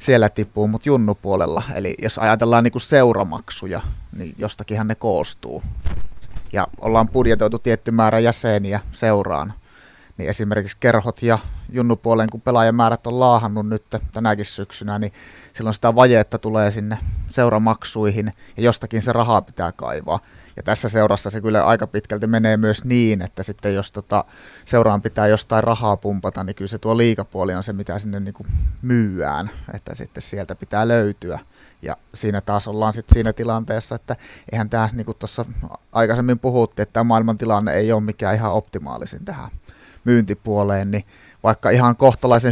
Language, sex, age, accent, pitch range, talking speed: Finnish, male, 30-49, native, 100-115 Hz, 155 wpm